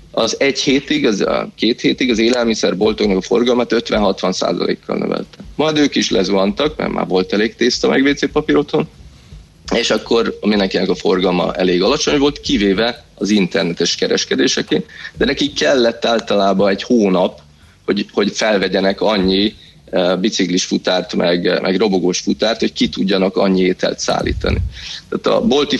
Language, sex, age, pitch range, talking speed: Hungarian, male, 20-39, 95-120 Hz, 145 wpm